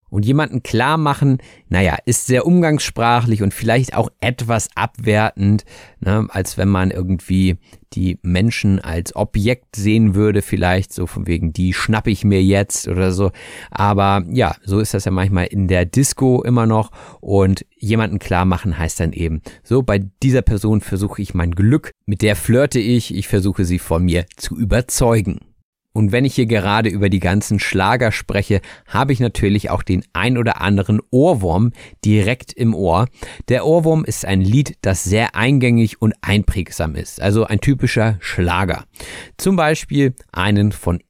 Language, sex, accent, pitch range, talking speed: German, male, German, 95-120 Hz, 165 wpm